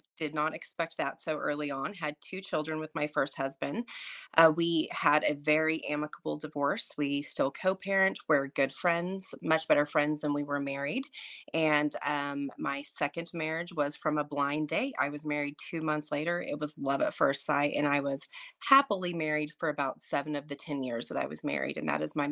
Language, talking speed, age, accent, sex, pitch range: English, 205 wpm, 30-49, American, female, 145-160 Hz